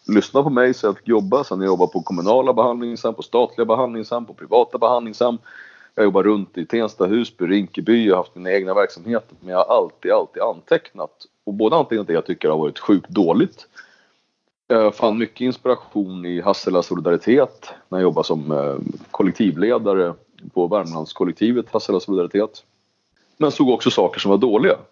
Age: 30-49